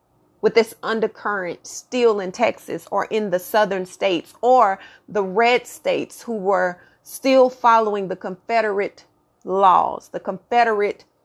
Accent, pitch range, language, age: American, 200-235 Hz, English, 30-49